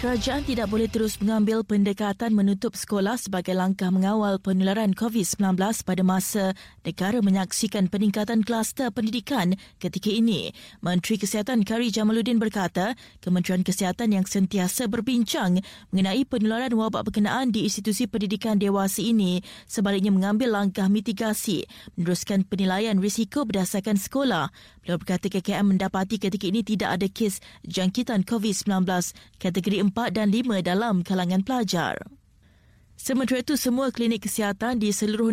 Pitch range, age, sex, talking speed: 195-230 Hz, 20-39, female, 130 wpm